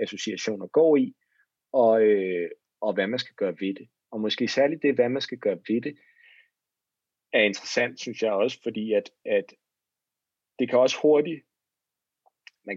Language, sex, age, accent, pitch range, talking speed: Danish, male, 30-49, native, 110-150 Hz, 165 wpm